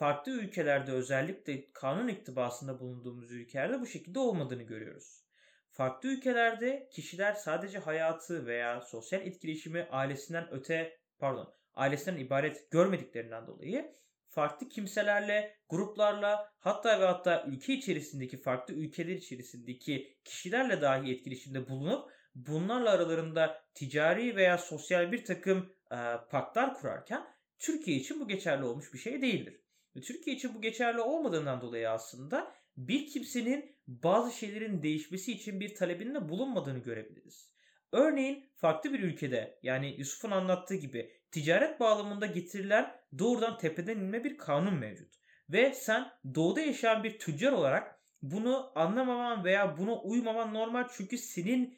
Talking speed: 125 wpm